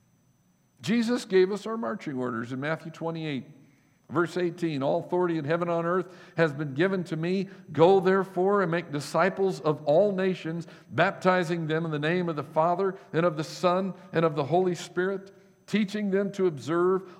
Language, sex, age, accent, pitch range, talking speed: English, male, 50-69, American, 155-195 Hz, 180 wpm